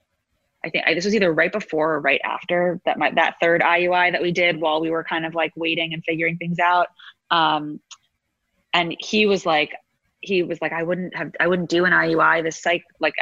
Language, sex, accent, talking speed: English, female, American, 225 wpm